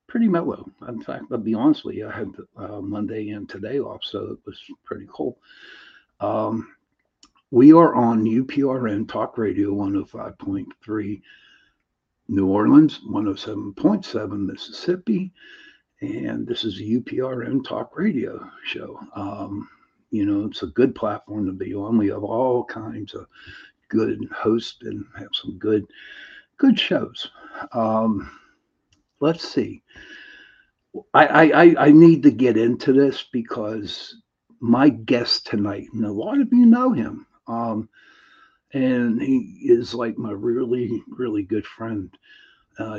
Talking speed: 140 wpm